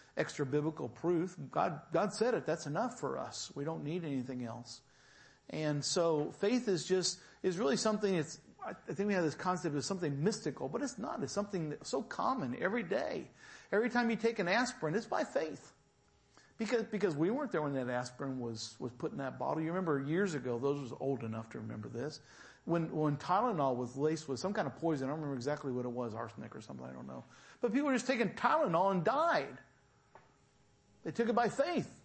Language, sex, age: English, male, 50-69